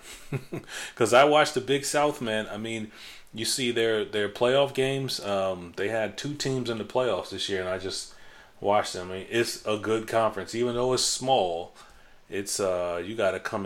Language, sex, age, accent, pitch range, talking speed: English, male, 30-49, American, 95-120 Hz, 200 wpm